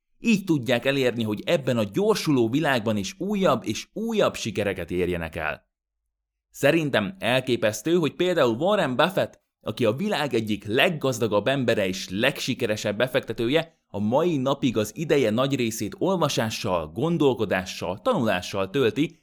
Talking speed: 130 wpm